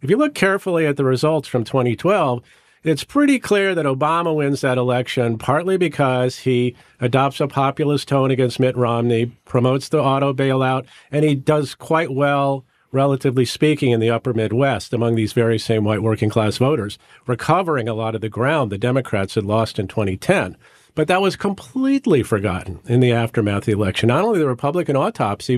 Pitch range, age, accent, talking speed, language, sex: 115-145 Hz, 50-69, American, 185 wpm, English, male